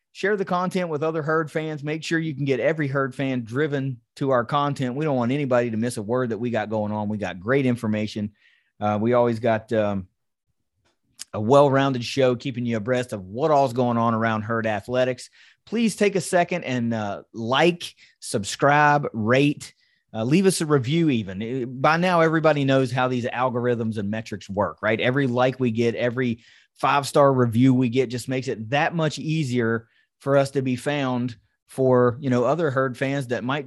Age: 30-49